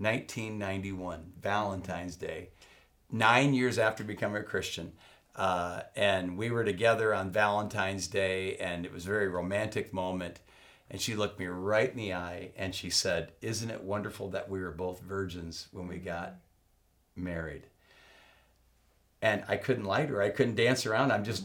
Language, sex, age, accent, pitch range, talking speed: English, male, 50-69, American, 90-120 Hz, 160 wpm